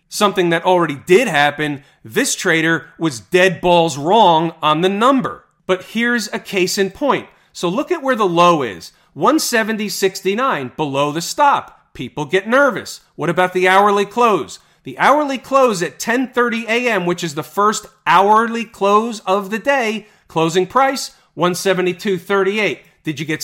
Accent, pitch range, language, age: American, 165-215 Hz, English, 40-59